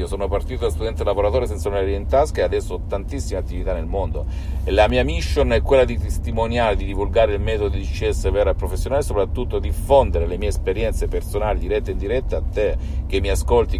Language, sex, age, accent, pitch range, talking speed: Italian, male, 50-69, native, 80-95 Hz, 205 wpm